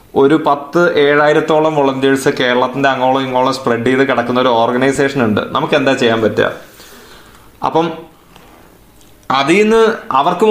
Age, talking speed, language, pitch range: 20-39, 120 wpm, Malayalam, 125-155 Hz